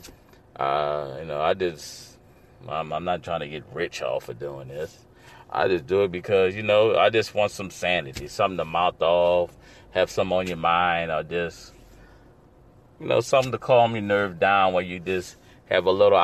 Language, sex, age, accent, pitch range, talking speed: English, male, 30-49, American, 90-120 Hz, 195 wpm